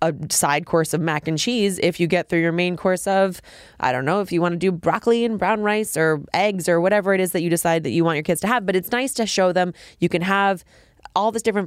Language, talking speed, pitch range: English, 285 wpm, 160-195 Hz